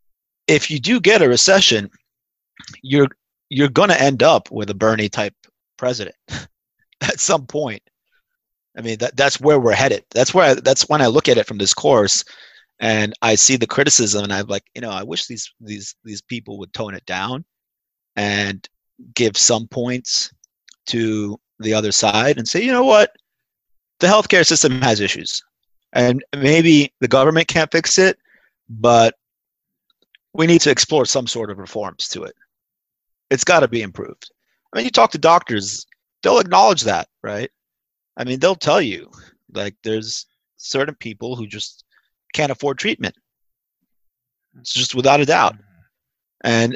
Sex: male